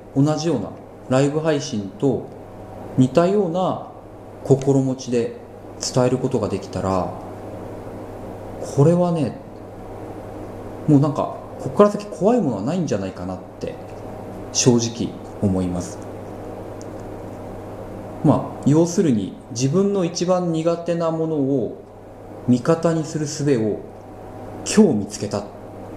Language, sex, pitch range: Japanese, male, 105-135 Hz